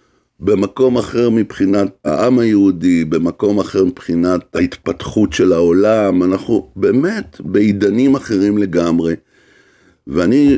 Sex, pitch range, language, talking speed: male, 85-125 Hz, Hebrew, 95 wpm